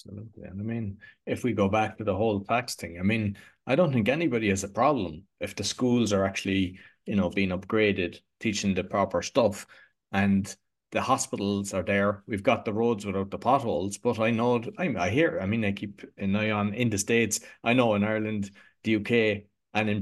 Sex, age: male, 30-49